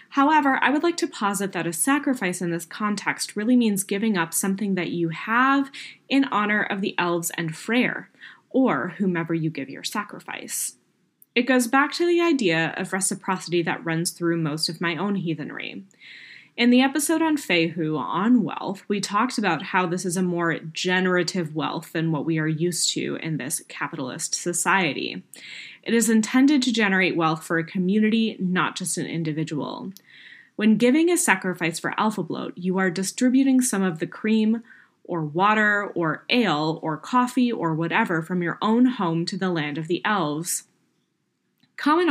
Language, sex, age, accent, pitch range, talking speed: English, female, 20-39, American, 170-230 Hz, 175 wpm